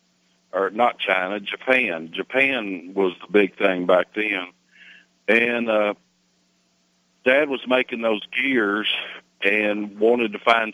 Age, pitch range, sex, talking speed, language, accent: 50-69, 95-115 Hz, male, 125 wpm, English, American